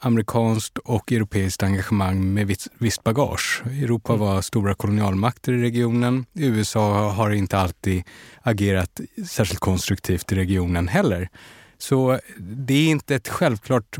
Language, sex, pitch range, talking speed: Swedish, male, 95-125 Hz, 125 wpm